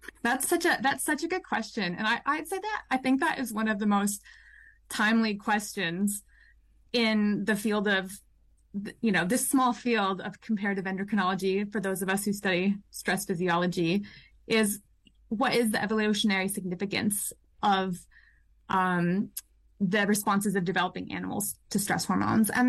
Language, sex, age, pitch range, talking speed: English, female, 20-39, 195-235 Hz, 160 wpm